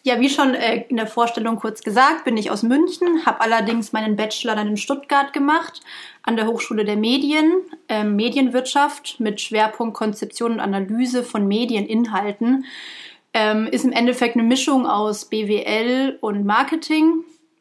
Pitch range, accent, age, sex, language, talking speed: 210-265 Hz, German, 30-49, female, German, 150 wpm